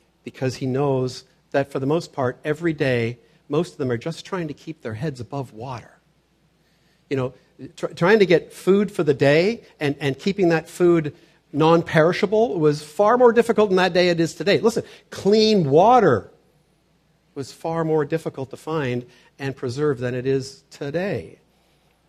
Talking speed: 175 wpm